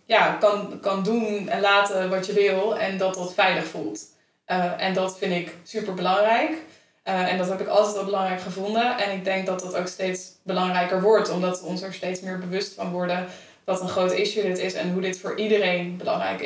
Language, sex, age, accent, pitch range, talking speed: Dutch, female, 20-39, Dutch, 185-205 Hz, 220 wpm